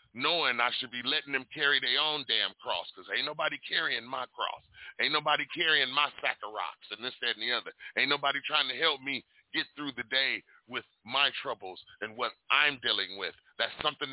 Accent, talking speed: American, 210 wpm